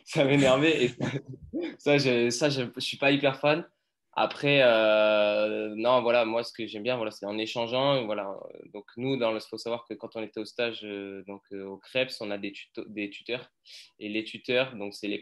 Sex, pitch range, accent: male, 100-125 Hz, French